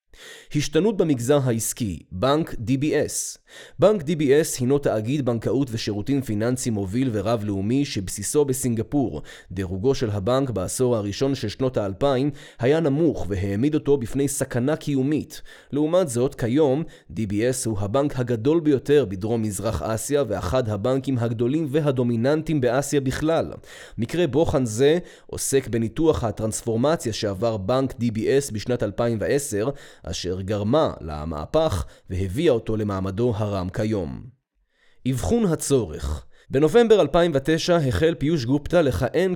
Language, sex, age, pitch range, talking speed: Hebrew, male, 20-39, 110-145 Hz, 115 wpm